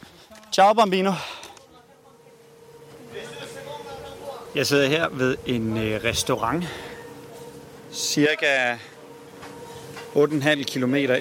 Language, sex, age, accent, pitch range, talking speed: Danish, male, 30-49, native, 125-155 Hz, 60 wpm